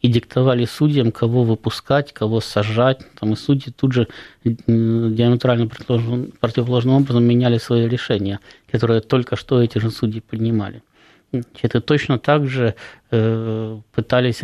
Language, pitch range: Russian, 110-125 Hz